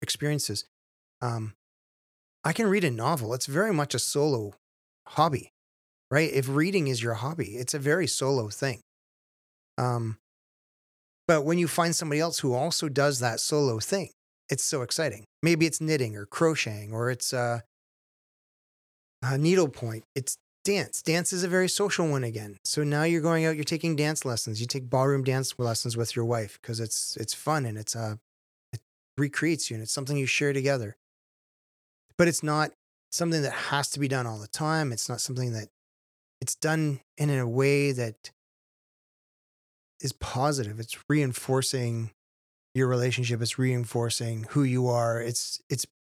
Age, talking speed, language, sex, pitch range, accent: 30-49, 165 wpm, English, male, 115-150 Hz, American